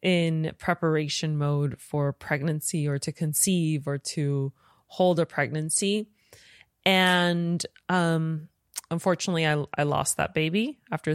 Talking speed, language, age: 120 wpm, English, 20-39